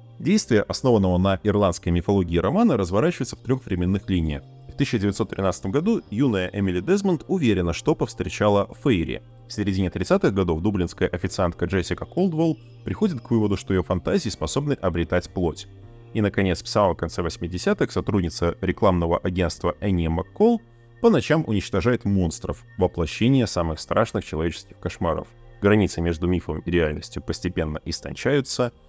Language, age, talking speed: Russian, 30-49, 135 wpm